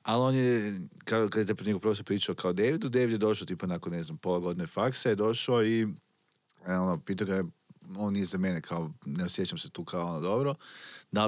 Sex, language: male, Croatian